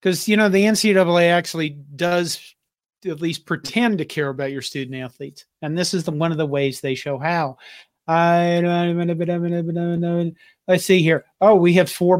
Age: 40-59